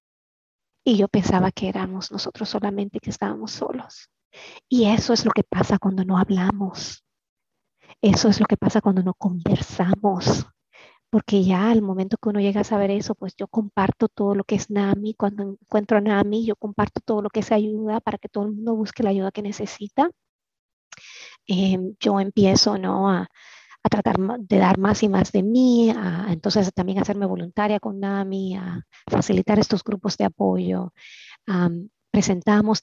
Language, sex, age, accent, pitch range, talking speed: Spanish, female, 30-49, American, 185-215 Hz, 170 wpm